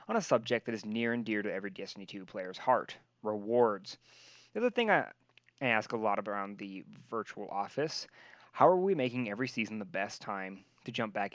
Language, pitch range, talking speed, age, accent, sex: English, 100-130 Hz, 205 wpm, 20-39, American, male